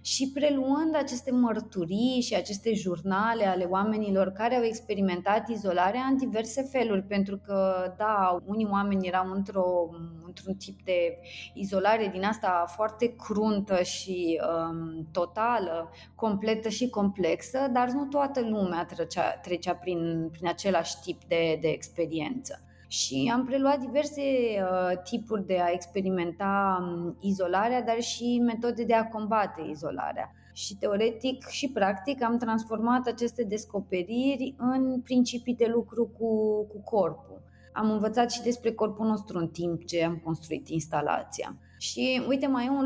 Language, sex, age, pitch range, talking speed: Romanian, female, 20-39, 180-240 Hz, 135 wpm